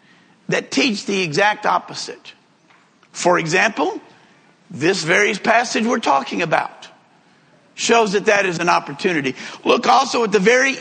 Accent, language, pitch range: American, English, 200-255 Hz